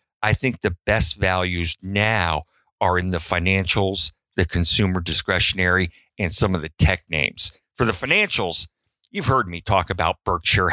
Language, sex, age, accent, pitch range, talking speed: English, male, 50-69, American, 90-110 Hz, 155 wpm